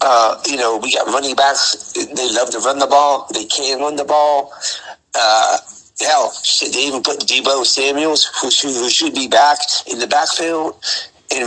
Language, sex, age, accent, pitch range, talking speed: English, male, 50-69, American, 115-185 Hz, 185 wpm